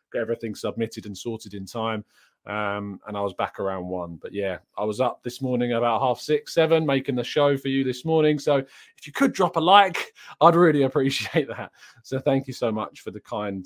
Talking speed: 220 wpm